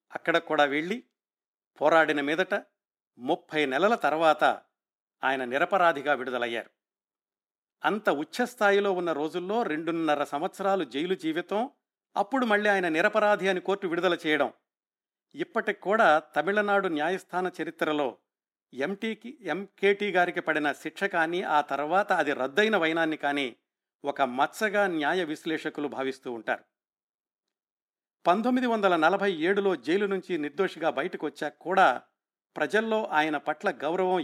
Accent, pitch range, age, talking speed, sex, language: native, 145-195 Hz, 50-69, 110 wpm, male, Telugu